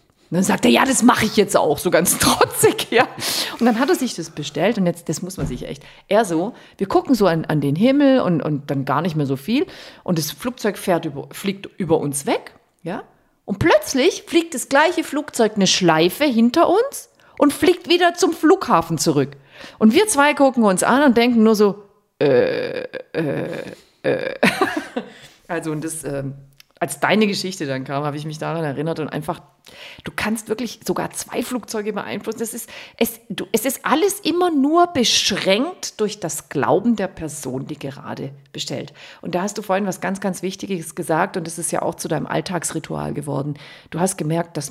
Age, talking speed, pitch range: 40-59, 195 wpm, 155-245 Hz